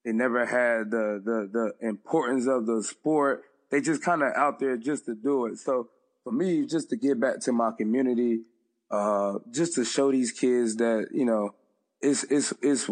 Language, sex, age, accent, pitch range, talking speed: English, male, 20-39, American, 115-135 Hz, 195 wpm